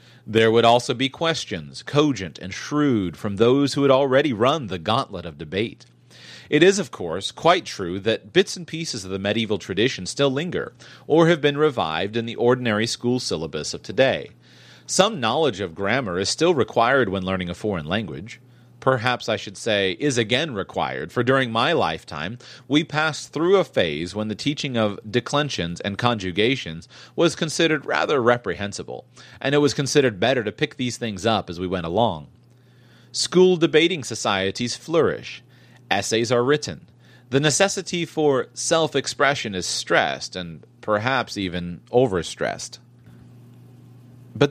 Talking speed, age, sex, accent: 155 wpm, 30-49, male, American